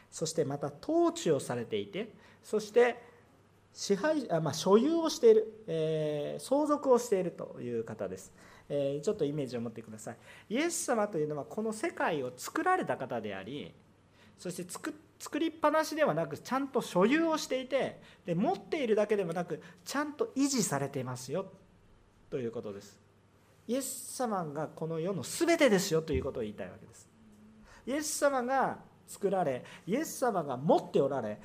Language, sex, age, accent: Japanese, male, 40-59, native